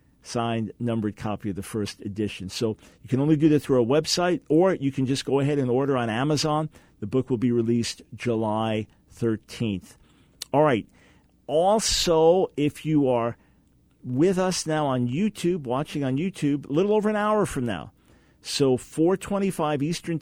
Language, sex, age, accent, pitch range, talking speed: English, male, 50-69, American, 115-150 Hz, 170 wpm